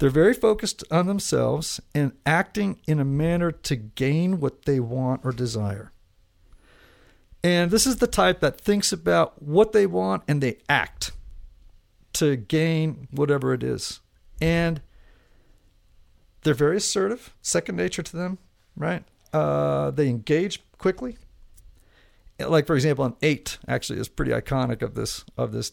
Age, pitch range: 50-69, 105-170 Hz